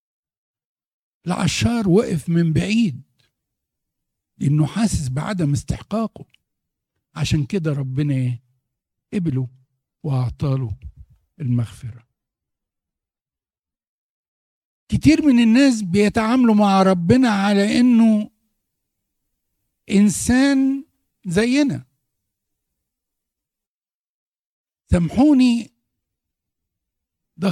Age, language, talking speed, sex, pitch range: 60-79, Arabic, 60 wpm, male, 140-225 Hz